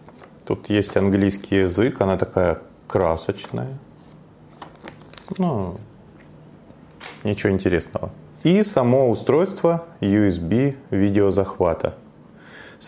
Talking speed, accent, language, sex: 75 wpm, native, Russian, male